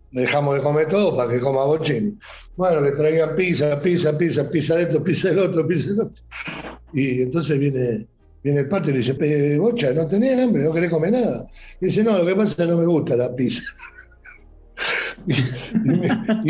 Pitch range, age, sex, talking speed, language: 135-175 Hz, 60-79, male, 195 wpm, English